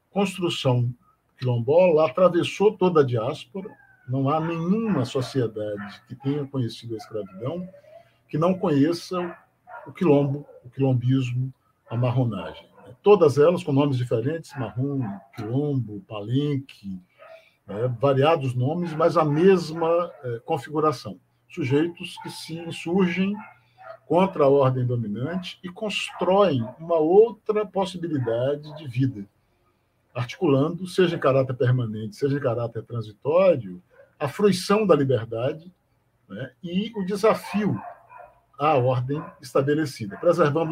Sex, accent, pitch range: male, Brazilian, 125-175 Hz